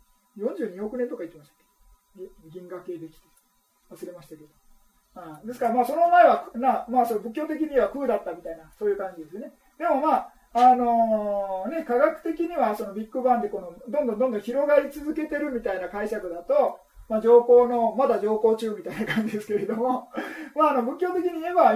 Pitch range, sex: 200-285 Hz, male